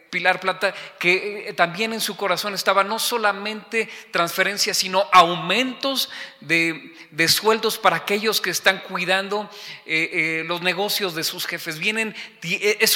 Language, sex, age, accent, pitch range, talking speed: Spanish, male, 40-59, Mexican, 180-220 Hz, 140 wpm